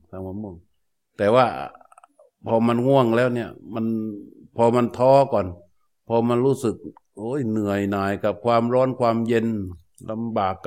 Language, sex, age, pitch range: Thai, male, 60-79, 105-125 Hz